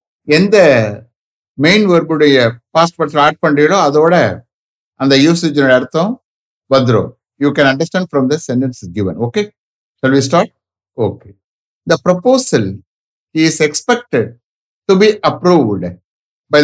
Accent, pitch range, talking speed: Indian, 125-175 Hz, 95 wpm